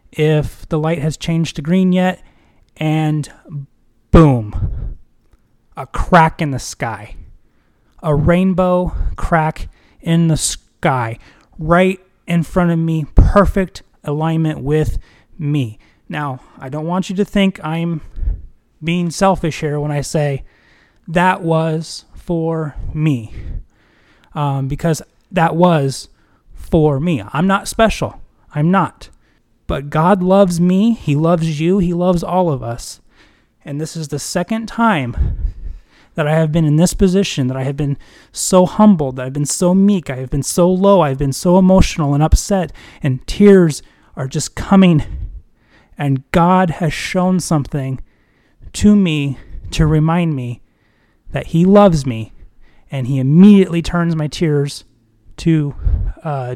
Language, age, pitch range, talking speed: English, 20-39, 130-175 Hz, 140 wpm